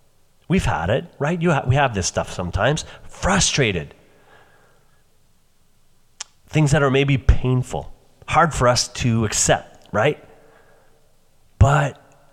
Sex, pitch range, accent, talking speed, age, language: male, 100-130 Hz, American, 115 wpm, 30-49, English